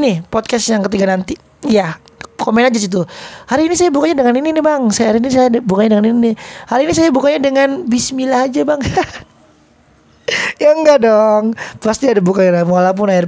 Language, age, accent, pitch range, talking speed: Indonesian, 20-39, native, 195-260 Hz, 180 wpm